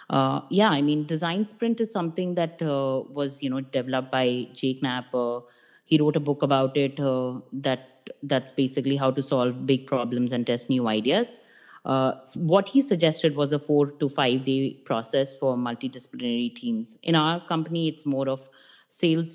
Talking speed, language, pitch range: 180 wpm, English, 130-160 Hz